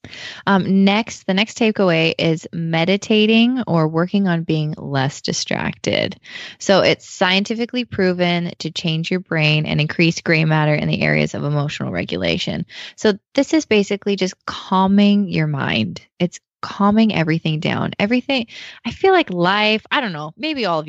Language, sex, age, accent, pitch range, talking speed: English, female, 20-39, American, 160-205 Hz, 155 wpm